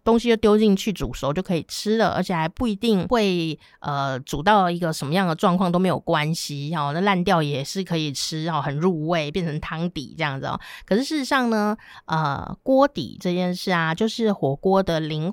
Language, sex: Chinese, female